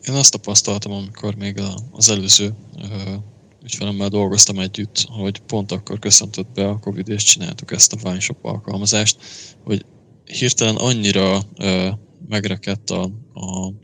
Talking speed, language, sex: 115 wpm, Hungarian, male